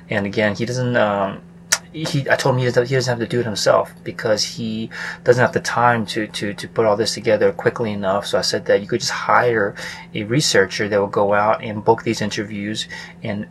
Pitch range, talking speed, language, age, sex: 105-120 Hz, 220 wpm, English, 20-39, male